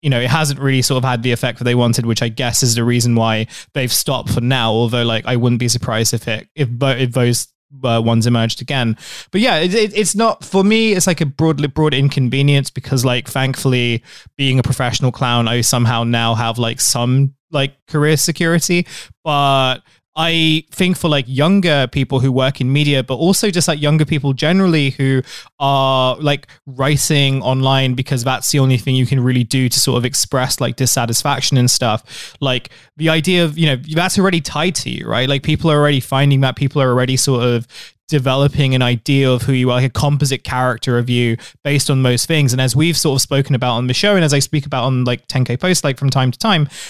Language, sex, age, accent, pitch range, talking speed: English, male, 20-39, British, 125-150 Hz, 220 wpm